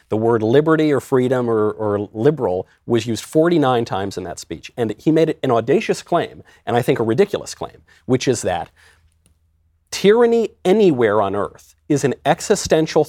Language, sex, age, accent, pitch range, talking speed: English, male, 40-59, American, 105-155 Hz, 170 wpm